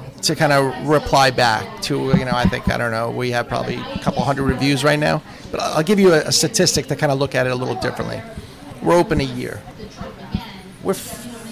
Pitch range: 135-175 Hz